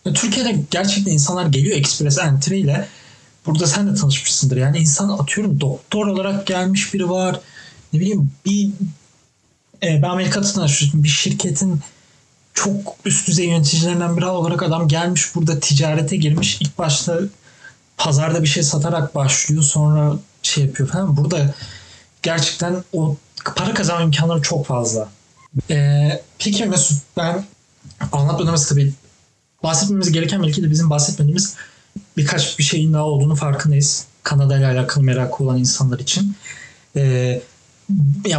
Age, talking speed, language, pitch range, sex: 30-49, 130 wpm, Turkish, 140-175 Hz, male